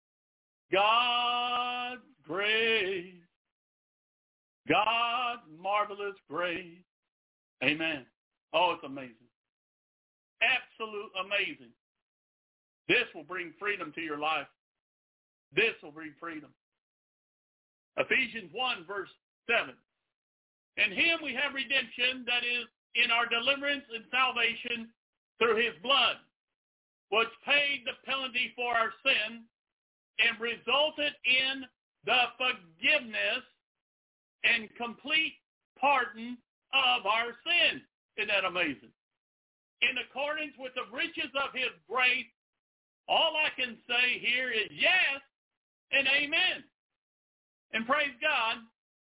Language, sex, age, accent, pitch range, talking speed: English, male, 60-79, American, 225-275 Hz, 100 wpm